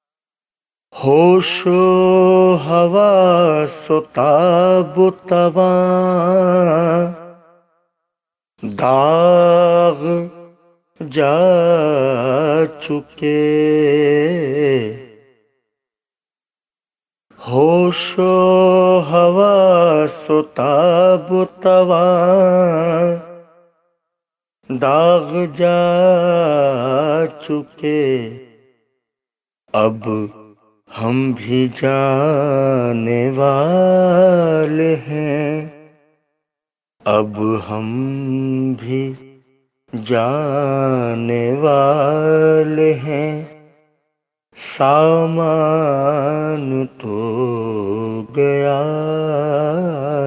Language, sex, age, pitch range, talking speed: Urdu, male, 50-69, 135-170 Hz, 35 wpm